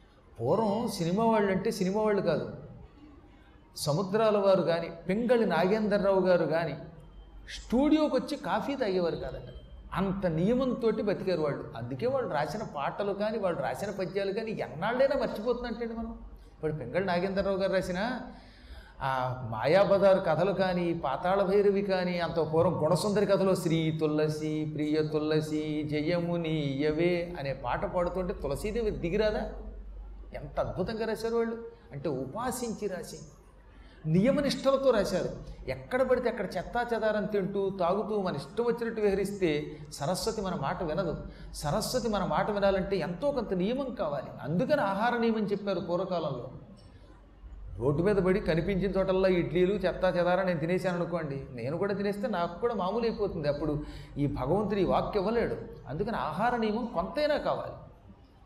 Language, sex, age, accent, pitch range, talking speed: Telugu, male, 30-49, native, 155-215 Hz, 130 wpm